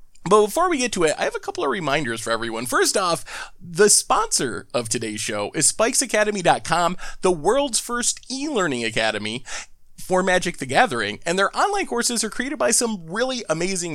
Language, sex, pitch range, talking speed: English, male, 145-230 Hz, 180 wpm